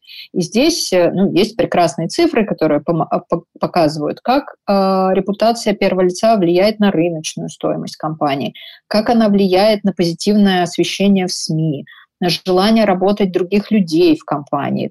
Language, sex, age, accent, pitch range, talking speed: Russian, female, 20-39, native, 170-215 Hz, 135 wpm